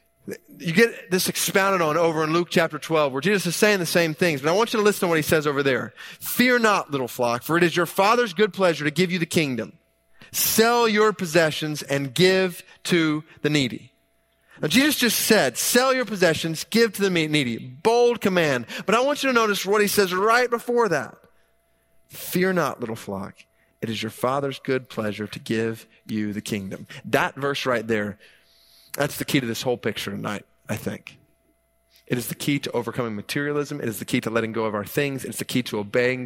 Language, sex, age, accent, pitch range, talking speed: English, male, 30-49, American, 120-180 Hz, 215 wpm